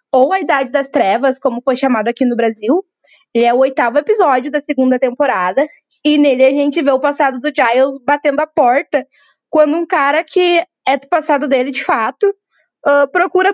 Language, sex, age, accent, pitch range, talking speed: Portuguese, female, 10-29, Brazilian, 260-335 Hz, 185 wpm